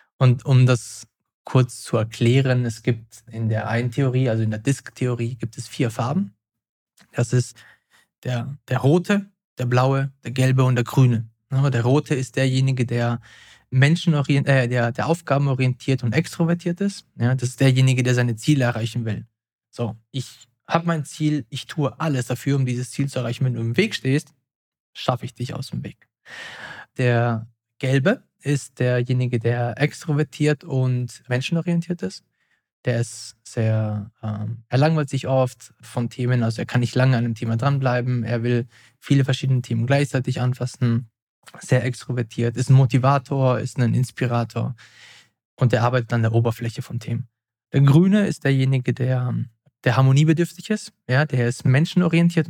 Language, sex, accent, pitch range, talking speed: German, male, German, 120-140 Hz, 165 wpm